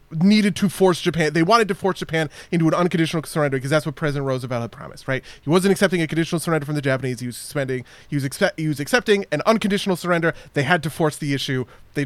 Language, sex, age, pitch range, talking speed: English, male, 30-49, 150-195 Hz, 245 wpm